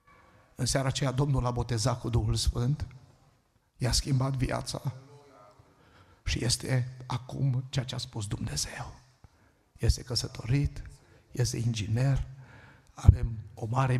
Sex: male